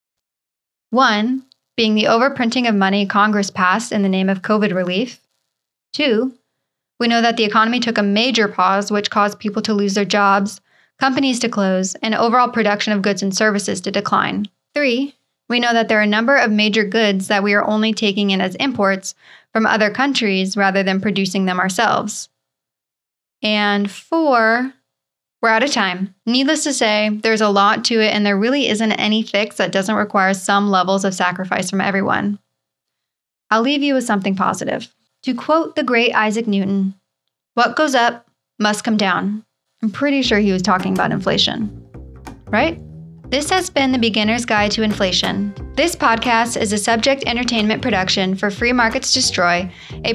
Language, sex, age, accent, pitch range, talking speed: English, female, 10-29, American, 195-235 Hz, 175 wpm